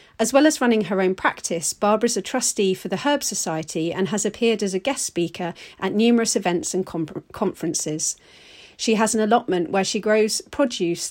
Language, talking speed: English, 190 wpm